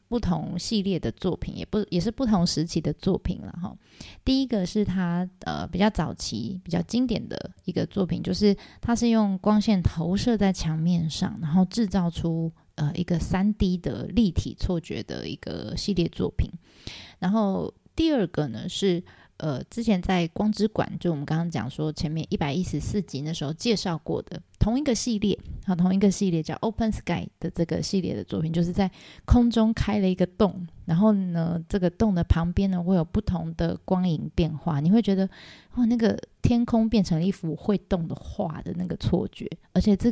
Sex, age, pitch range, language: female, 20-39, 170-210 Hz, Chinese